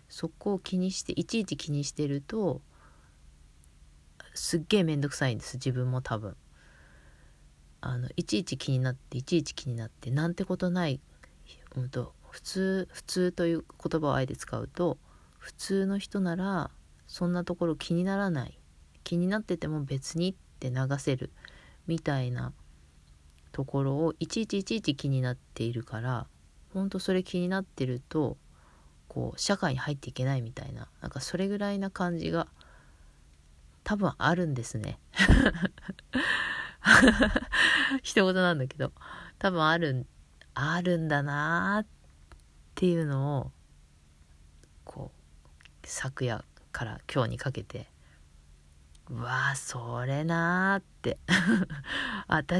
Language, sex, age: Japanese, female, 40-59